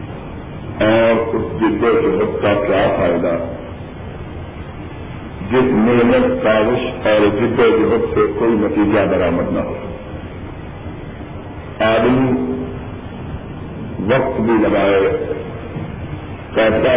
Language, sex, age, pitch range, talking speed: Urdu, male, 50-69, 95-130 Hz, 90 wpm